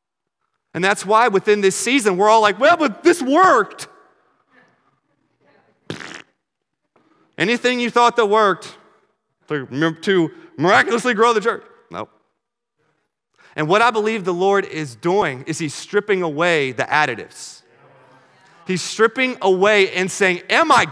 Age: 30-49